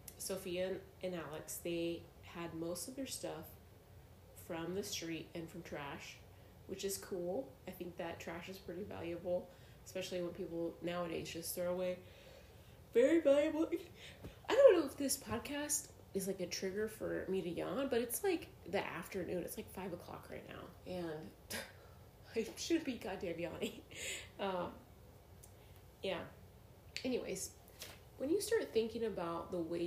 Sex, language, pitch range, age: female, English, 160-190 Hz, 20-39